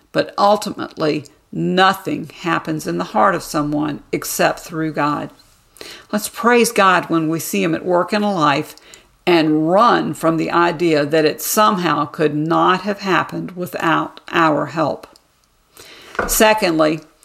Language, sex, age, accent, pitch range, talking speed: English, female, 50-69, American, 160-210 Hz, 140 wpm